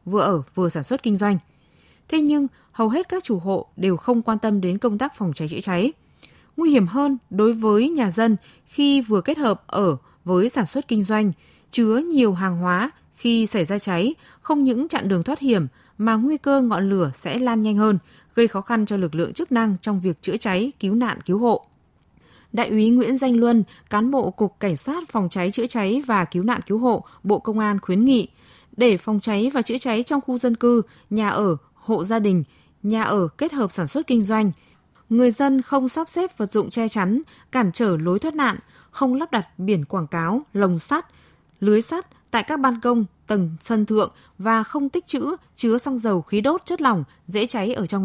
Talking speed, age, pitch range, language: 215 wpm, 20-39, 195-250 Hz, Vietnamese